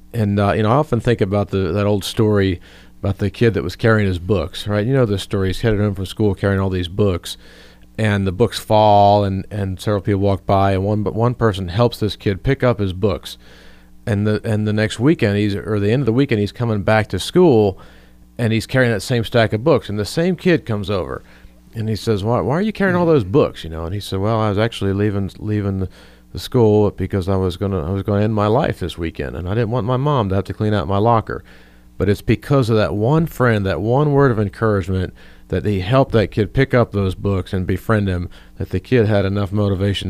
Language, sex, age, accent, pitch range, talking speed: English, male, 40-59, American, 95-115 Hz, 245 wpm